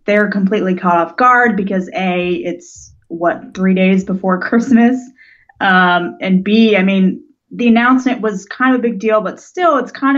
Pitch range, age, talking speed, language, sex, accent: 180-220 Hz, 20-39, 175 wpm, English, female, American